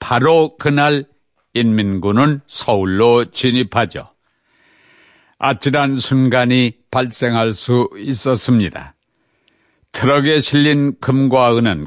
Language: Korean